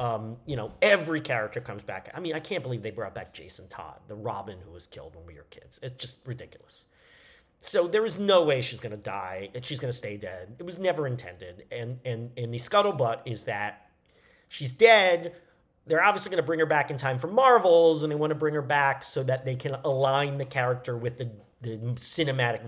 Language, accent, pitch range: English, American, 120-160 Hz